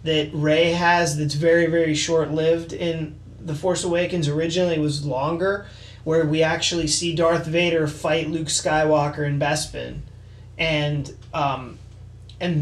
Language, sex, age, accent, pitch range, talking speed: English, male, 20-39, American, 140-170 Hz, 140 wpm